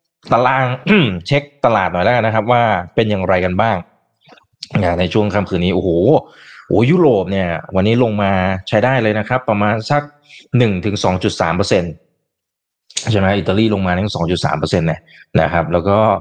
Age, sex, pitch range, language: 20-39, male, 95-125 Hz, Thai